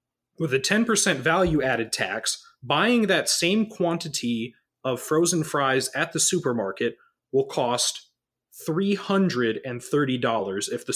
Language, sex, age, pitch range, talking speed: English, male, 30-49, 120-170 Hz, 110 wpm